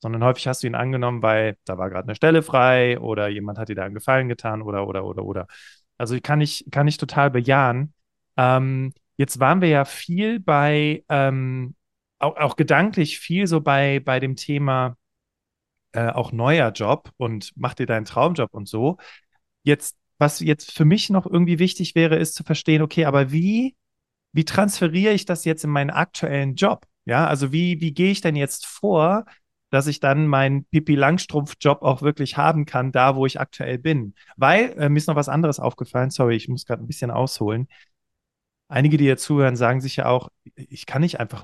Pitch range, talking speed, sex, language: 125-155 Hz, 195 wpm, male, German